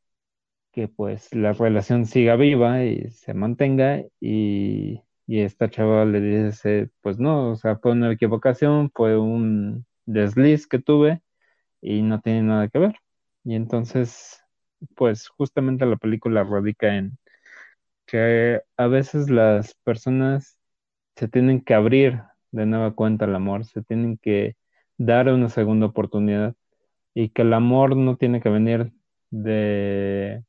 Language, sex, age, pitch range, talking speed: Spanish, male, 20-39, 105-125 Hz, 140 wpm